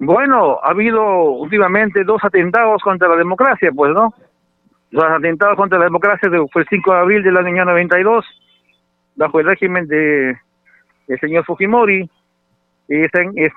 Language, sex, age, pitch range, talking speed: Spanish, male, 50-69, 155-210 Hz, 150 wpm